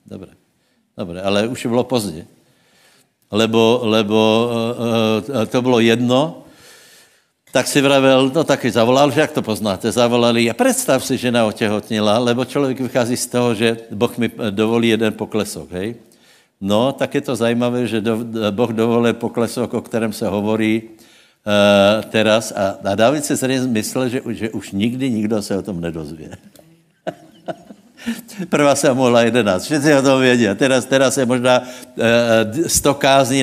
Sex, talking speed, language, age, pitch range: male, 160 wpm, Slovak, 60-79, 105-125 Hz